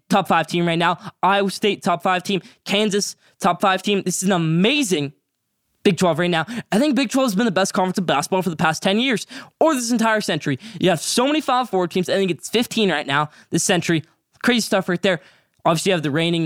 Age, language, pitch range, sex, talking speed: 10-29, English, 165-225 Hz, male, 240 wpm